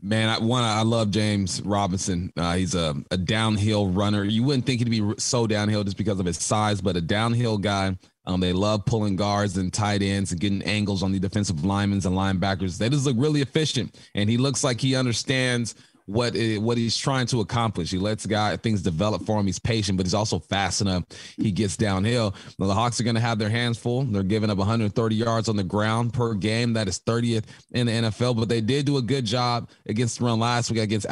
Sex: male